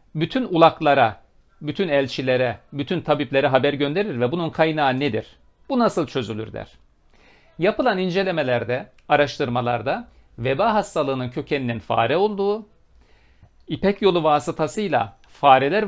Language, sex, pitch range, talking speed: Turkish, male, 125-170 Hz, 105 wpm